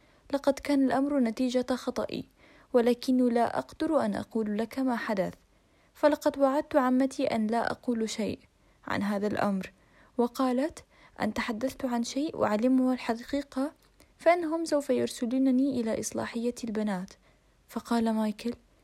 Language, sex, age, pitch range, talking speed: Arabic, female, 10-29, 210-265 Hz, 120 wpm